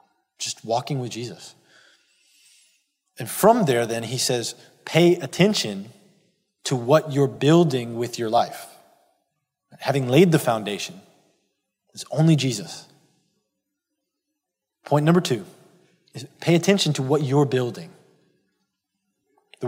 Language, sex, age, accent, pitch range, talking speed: English, male, 20-39, American, 130-175 Hz, 115 wpm